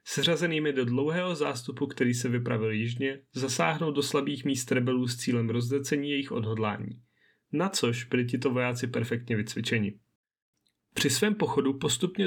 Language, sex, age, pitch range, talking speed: Czech, male, 30-49, 120-155 Hz, 140 wpm